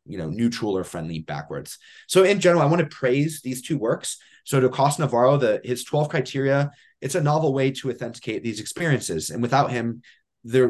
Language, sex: English, male